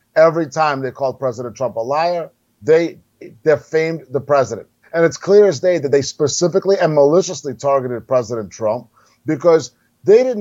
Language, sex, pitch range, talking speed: English, male, 130-170 Hz, 160 wpm